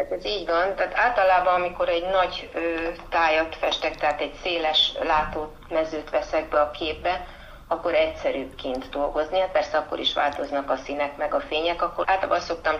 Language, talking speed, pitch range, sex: Hungarian, 175 wpm, 145-170 Hz, female